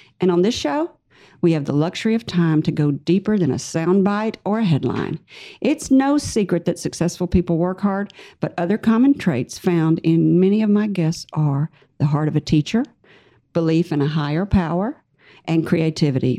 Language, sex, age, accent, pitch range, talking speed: English, female, 50-69, American, 160-215 Hz, 185 wpm